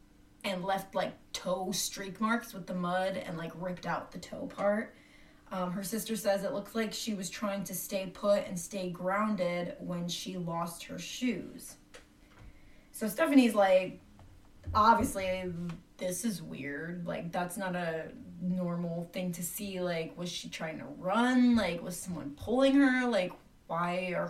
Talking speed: 165 wpm